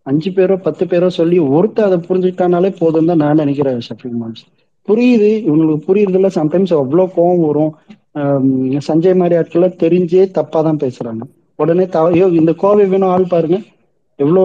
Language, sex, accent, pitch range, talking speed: Tamil, male, native, 150-180 Hz, 145 wpm